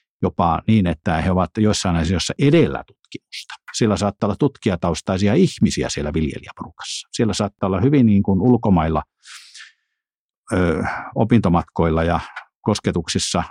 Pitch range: 85-105 Hz